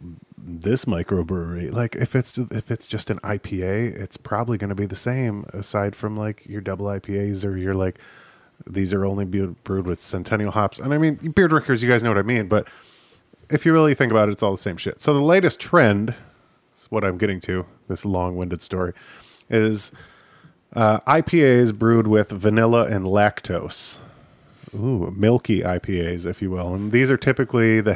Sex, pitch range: male, 95-120 Hz